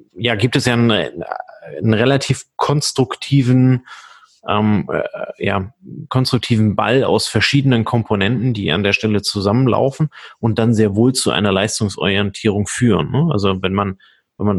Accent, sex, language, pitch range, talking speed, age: German, male, German, 105-120 Hz, 145 wpm, 30-49